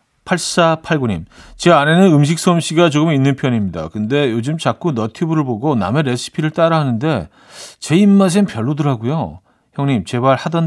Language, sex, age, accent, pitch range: Korean, male, 40-59, native, 105-155 Hz